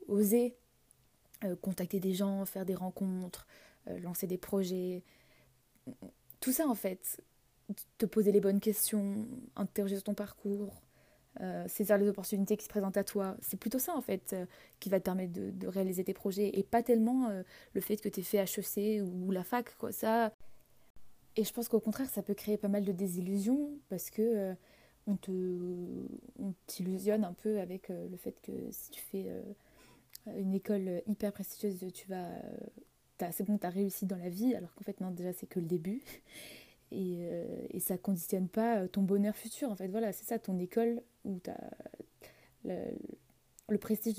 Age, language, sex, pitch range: 20-39, French, female, 185-220 Hz